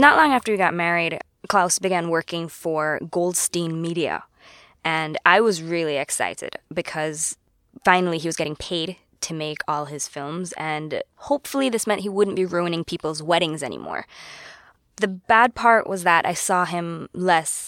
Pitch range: 165-205 Hz